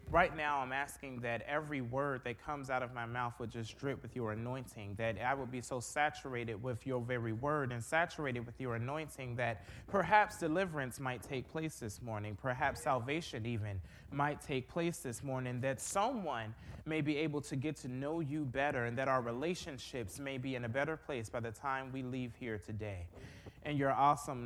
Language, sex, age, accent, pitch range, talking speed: English, male, 30-49, American, 115-145 Hz, 200 wpm